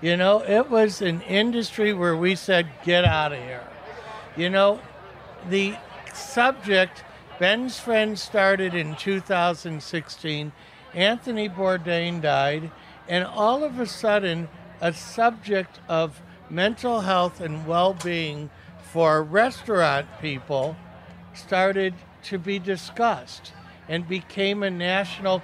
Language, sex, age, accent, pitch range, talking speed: English, male, 60-79, American, 165-210 Hz, 115 wpm